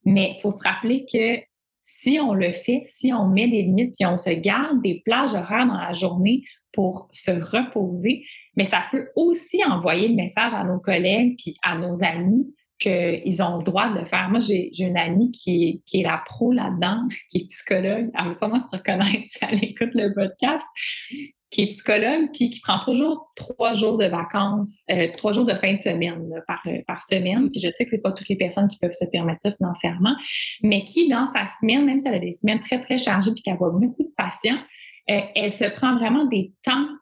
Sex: female